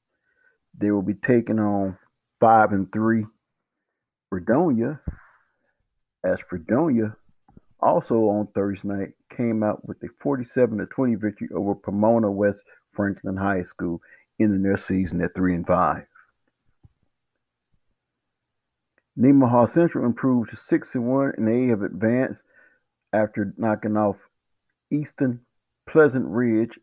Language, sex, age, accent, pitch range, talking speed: English, male, 50-69, American, 100-125 Hz, 120 wpm